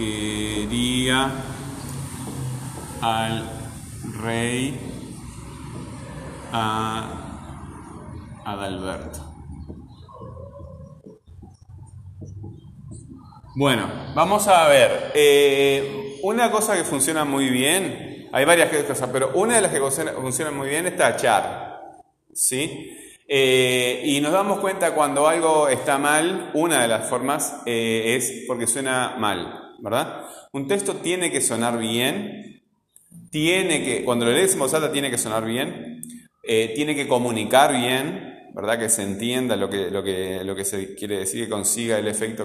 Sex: male